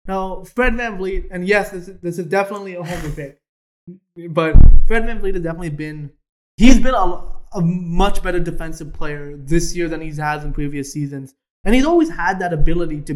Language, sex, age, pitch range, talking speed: English, male, 20-39, 155-195 Hz, 190 wpm